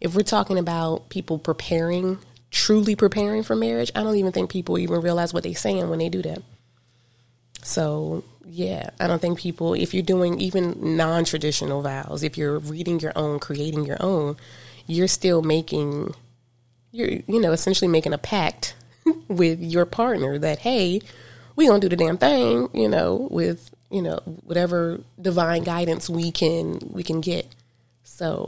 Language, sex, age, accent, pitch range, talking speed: English, female, 20-39, American, 125-185 Hz, 170 wpm